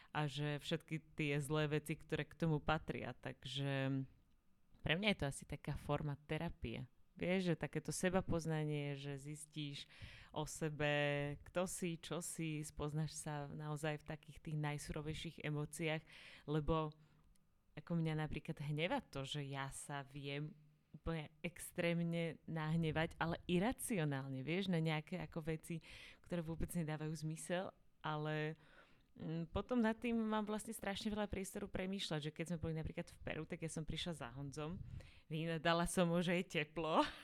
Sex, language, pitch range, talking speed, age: female, Slovak, 150-175 Hz, 150 wpm, 30-49